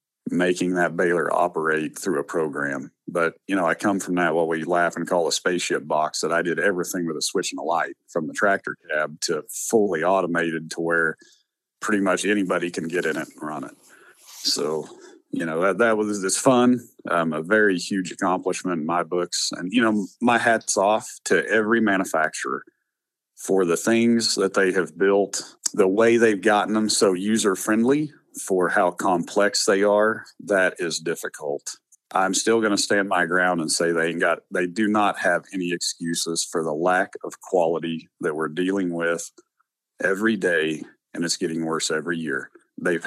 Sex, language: male, English